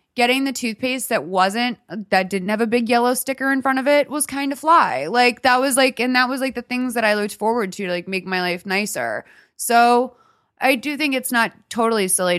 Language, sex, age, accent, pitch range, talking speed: English, female, 20-39, American, 180-230 Hz, 235 wpm